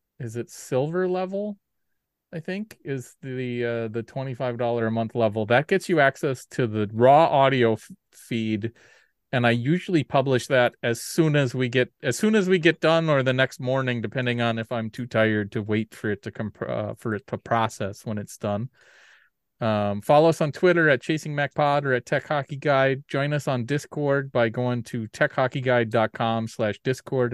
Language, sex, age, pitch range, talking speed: English, male, 30-49, 115-140 Hz, 180 wpm